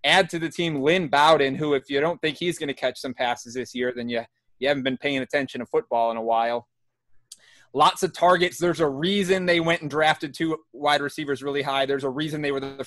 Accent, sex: American, male